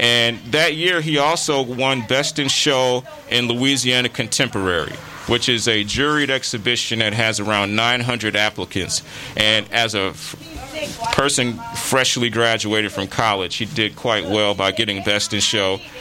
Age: 30-49